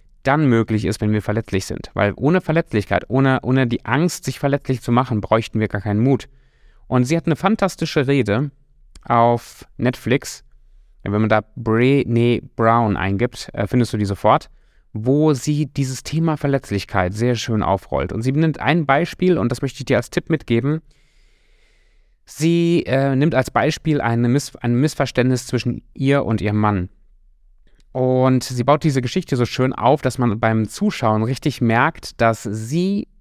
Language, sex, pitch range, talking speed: German, male, 115-150 Hz, 165 wpm